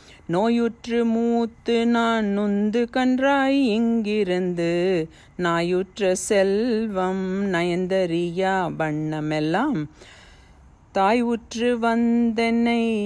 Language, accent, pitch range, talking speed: Tamil, native, 175-235 Hz, 55 wpm